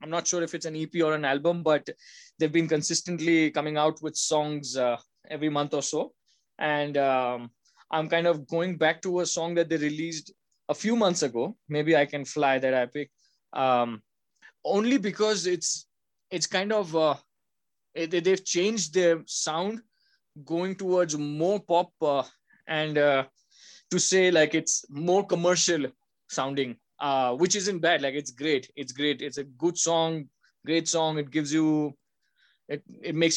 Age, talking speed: 20-39, 165 wpm